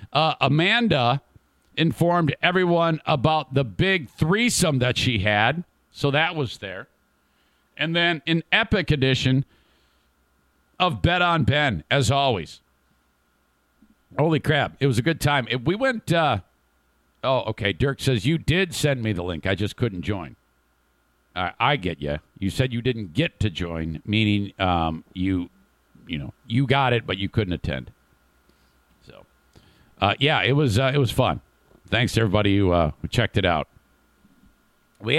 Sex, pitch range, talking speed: male, 95-150 Hz, 155 wpm